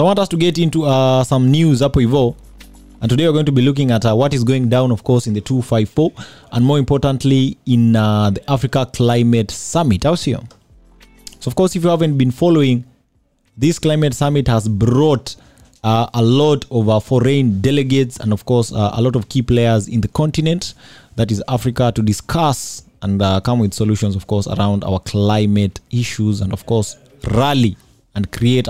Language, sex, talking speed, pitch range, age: English, male, 205 wpm, 105-140 Hz, 20-39